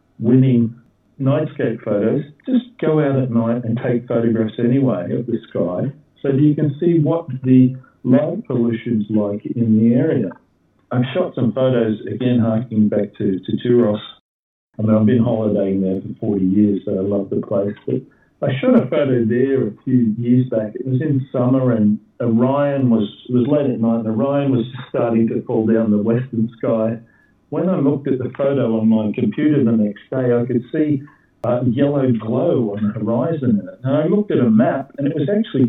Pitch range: 110-135 Hz